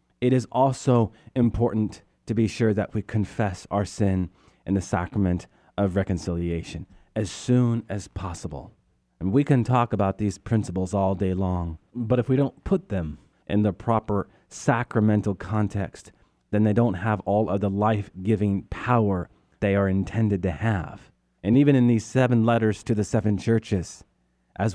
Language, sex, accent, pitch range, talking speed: English, male, American, 95-115 Hz, 165 wpm